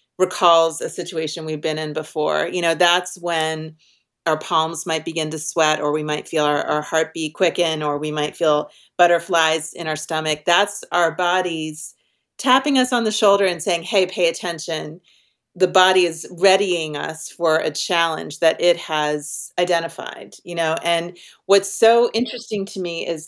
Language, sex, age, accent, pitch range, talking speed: English, female, 40-59, American, 165-200 Hz, 175 wpm